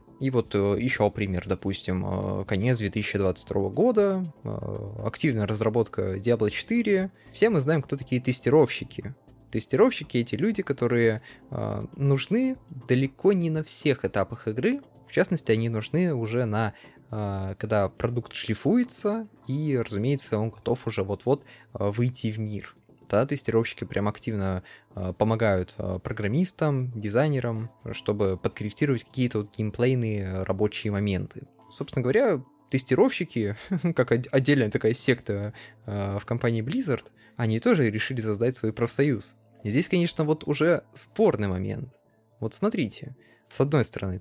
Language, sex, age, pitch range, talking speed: Russian, male, 20-39, 105-135 Hz, 120 wpm